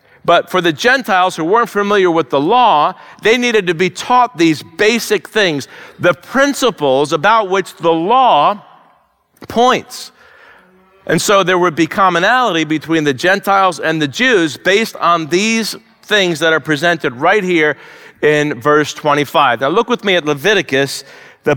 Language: English